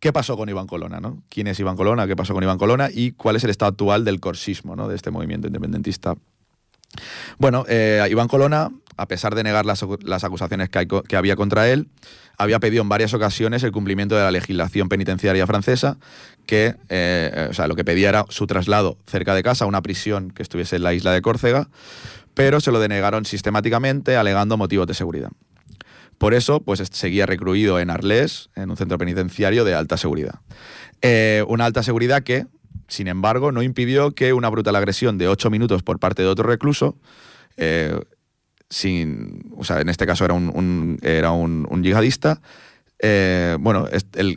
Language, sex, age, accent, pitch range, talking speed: Spanish, male, 30-49, Spanish, 95-115 Hz, 190 wpm